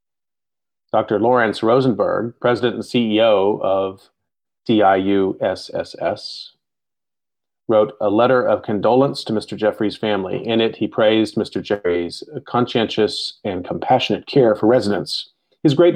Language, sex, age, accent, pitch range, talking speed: English, male, 40-59, American, 100-125 Hz, 115 wpm